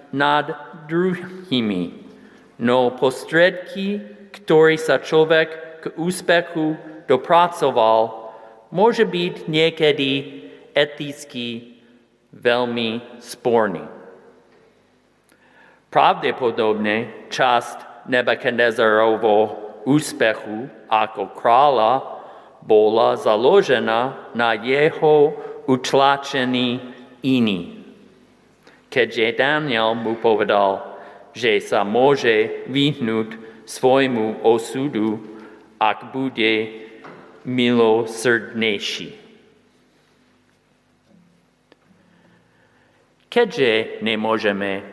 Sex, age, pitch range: male, 50-69, 110-155 Hz